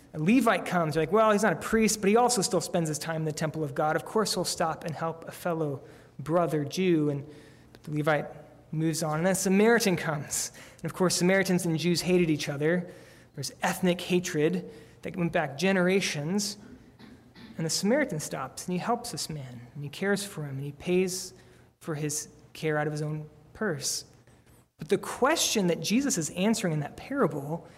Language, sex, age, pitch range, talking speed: English, male, 20-39, 155-200 Hz, 200 wpm